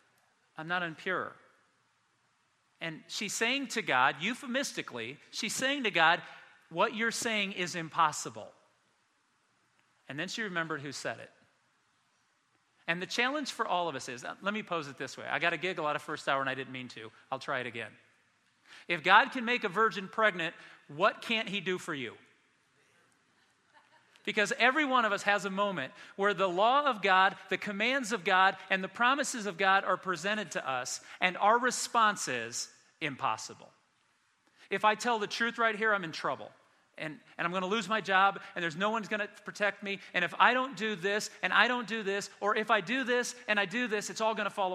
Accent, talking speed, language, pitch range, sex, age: American, 205 wpm, English, 175-225 Hz, male, 40-59